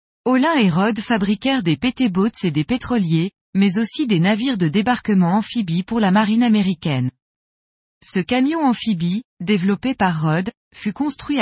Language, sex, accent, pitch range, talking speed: French, female, French, 185-245 Hz, 145 wpm